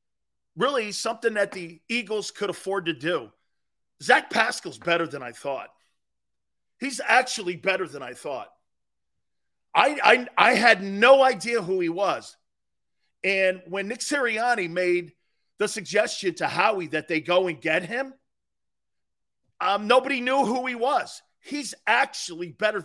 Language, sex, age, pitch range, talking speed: English, male, 40-59, 165-235 Hz, 140 wpm